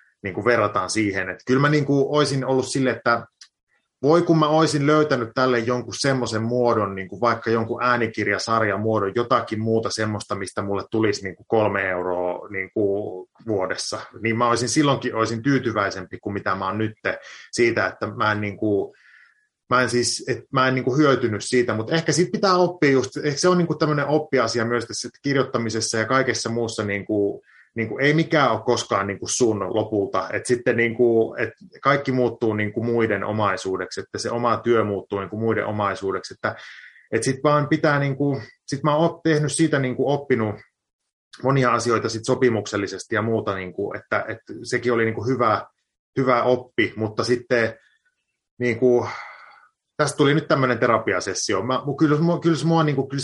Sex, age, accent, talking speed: male, 30-49, native, 160 wpm